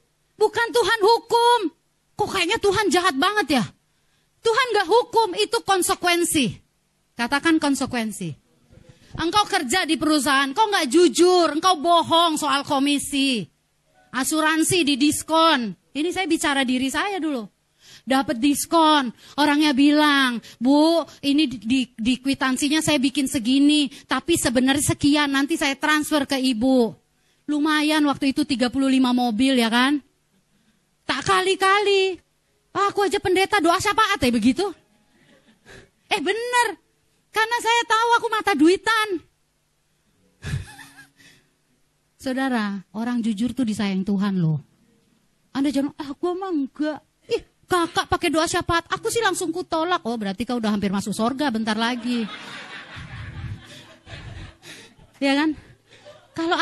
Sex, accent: female, native